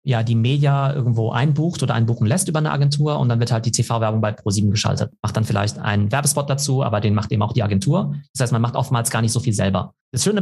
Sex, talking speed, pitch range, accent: male, 260 wpm, 115-140 Hz, German